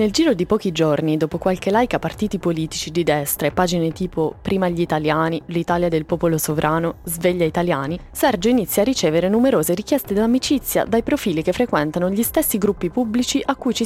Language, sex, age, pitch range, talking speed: Italian, female, 20-39, 160-230 Hz, 185 wpm